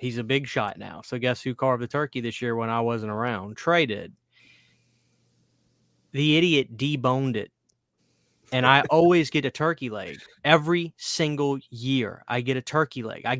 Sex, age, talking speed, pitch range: male, 20-39, 175 wpm, 115-140 Hz